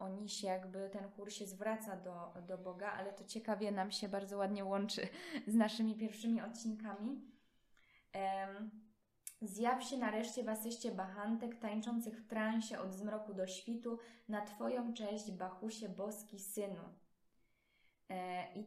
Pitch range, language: 195-230 Hz, Polish